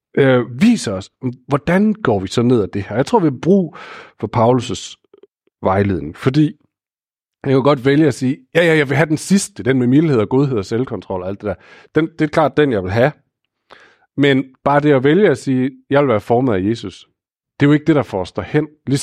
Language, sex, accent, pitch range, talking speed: Danish, male, native, 110-150 Hz, 235 wpm